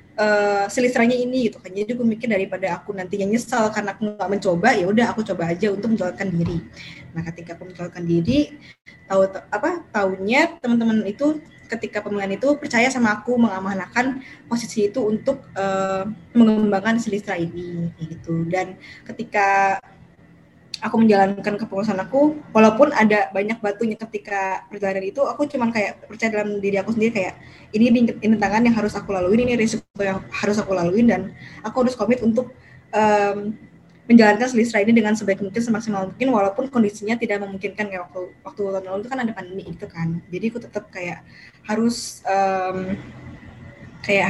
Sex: female